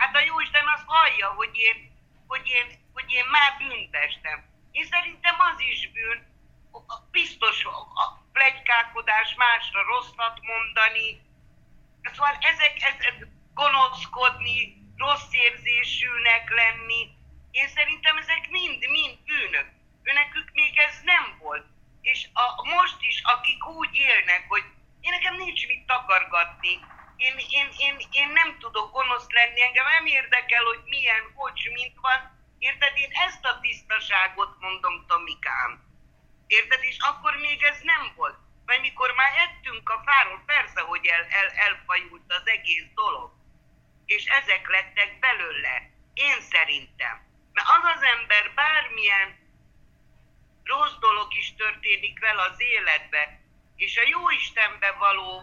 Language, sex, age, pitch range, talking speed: Hungarian, female, 50-69, 220-295 Hz, 135 wpm